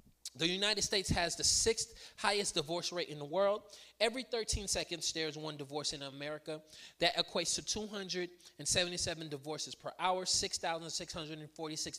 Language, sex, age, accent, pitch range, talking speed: English, male, 20-39, American, 140-180 Hz, 145 wpm